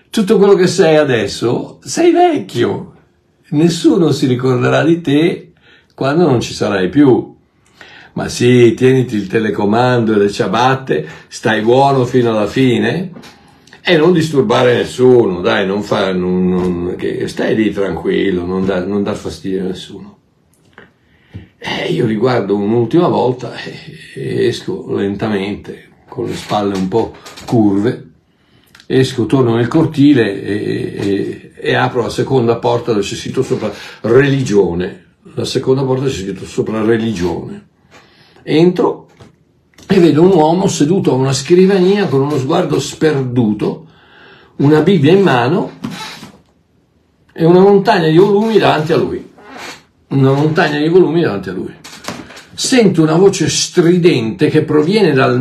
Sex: male